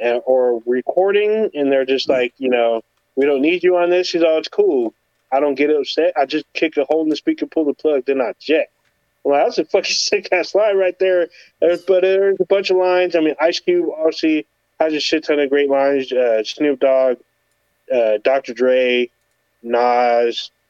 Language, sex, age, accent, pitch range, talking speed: English, male, 20-39, American, 135-180 Hz, 200 wpm